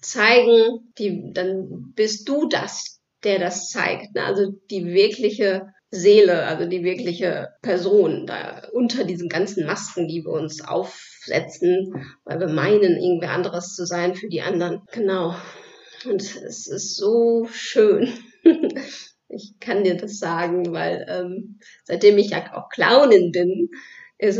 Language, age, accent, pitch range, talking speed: German, 30-49, German, 180-290 Hz, 140 wpm